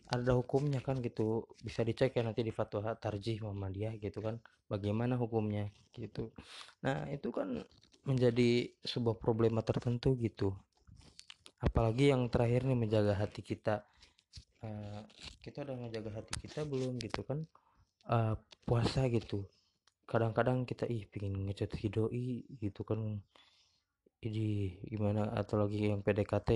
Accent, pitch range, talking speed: native, 100-120 Hz, 130 wpm